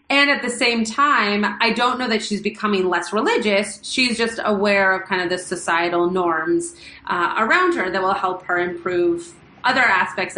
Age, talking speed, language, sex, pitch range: 30-49, 185 wpm, English, female, 180-230 Hz